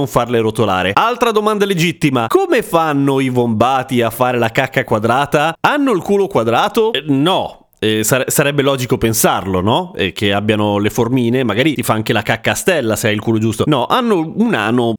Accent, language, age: native, Italian, 30-49